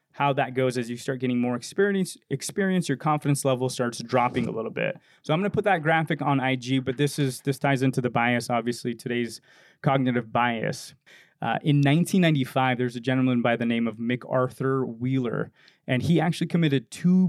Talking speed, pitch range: 190 wpm, 125-145 Hz